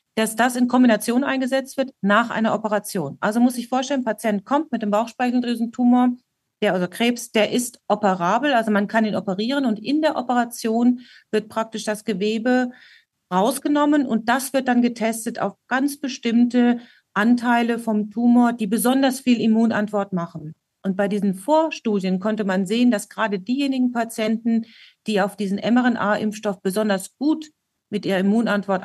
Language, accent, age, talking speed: German, German, 40-59, 160 wpm